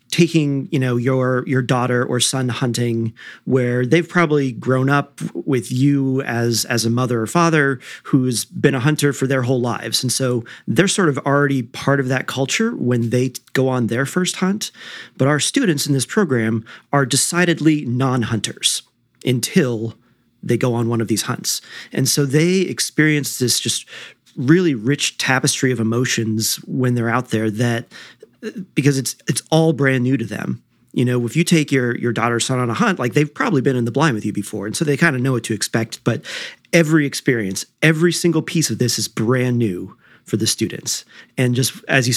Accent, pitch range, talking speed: American, 120-145 Hz, 195 wpm